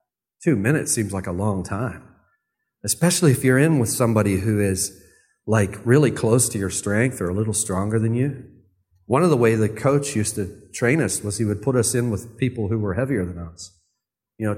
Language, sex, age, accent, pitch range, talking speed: English, male, 40-59, American, 100-135 Hz, 215 wpm